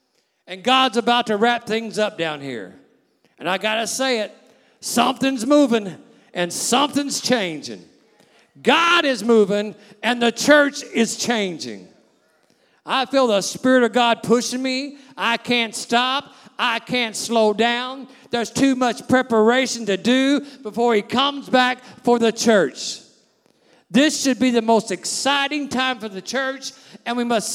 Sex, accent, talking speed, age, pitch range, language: male, American, 150 wpm, 50-69, 225-270 Hz, English